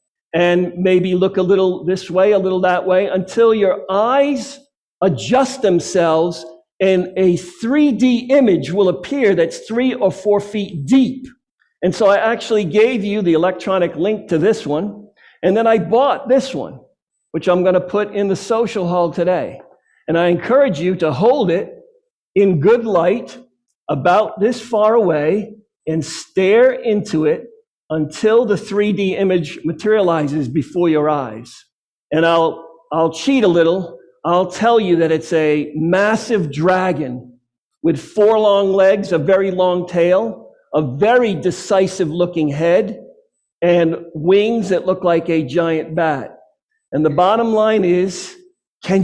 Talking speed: 150 wpm